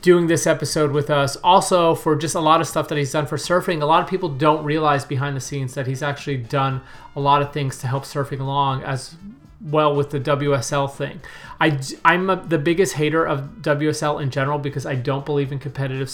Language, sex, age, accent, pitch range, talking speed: English, male, 30-49, American, 140-165 Hz, 220 wpm